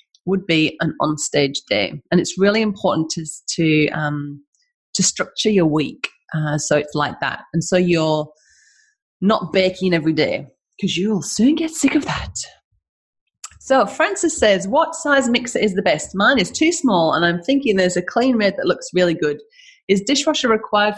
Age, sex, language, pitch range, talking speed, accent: 30-49, female, English, 160-240 Hz, 175 wpm, British